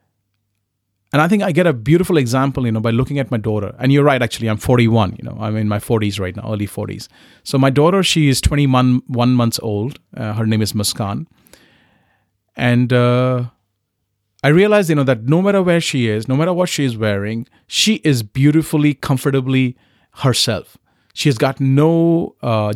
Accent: Indian